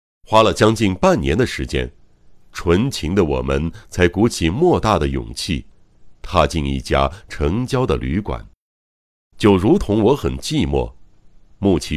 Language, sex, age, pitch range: Chinese, male, 60-79, 70-105 Hz